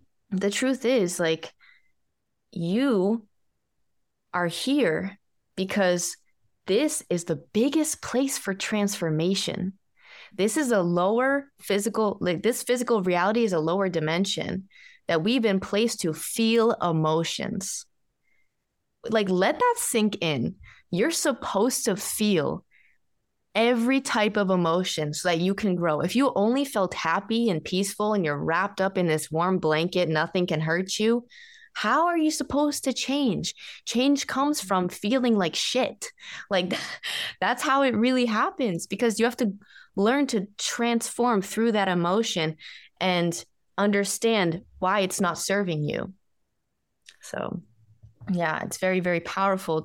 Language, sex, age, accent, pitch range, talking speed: English, female, 20-39, American, 175-235 Hz, 135 wpm